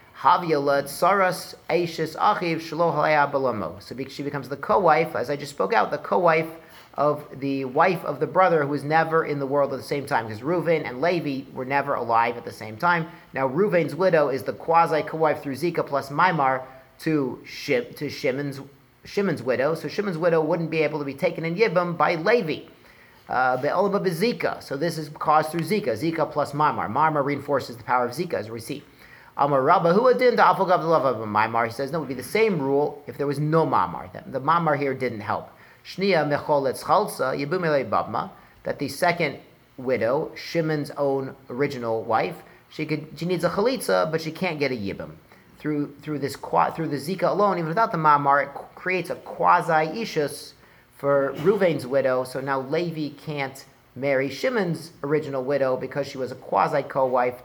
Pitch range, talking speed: 135-170 Hz, 170 wpm